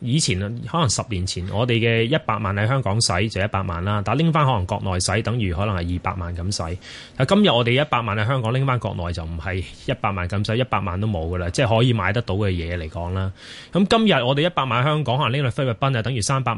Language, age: Chinese, 20-39